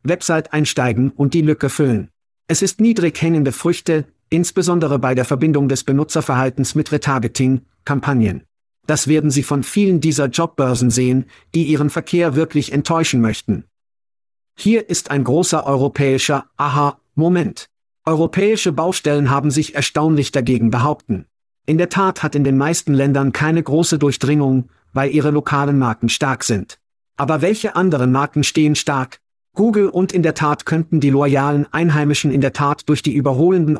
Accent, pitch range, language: German, 135-165 Hz, German